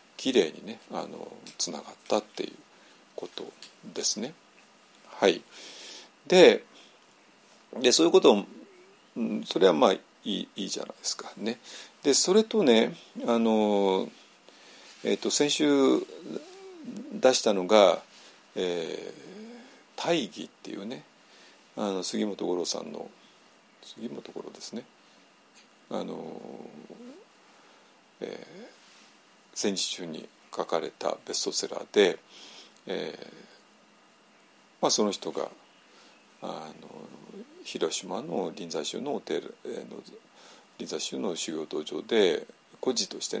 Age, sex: 50-69, male